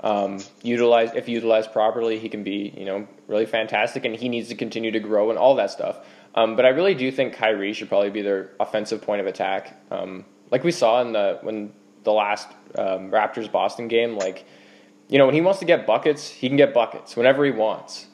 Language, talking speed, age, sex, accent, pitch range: English, 210 wpm, 20-39, male, American, 100-130 Hz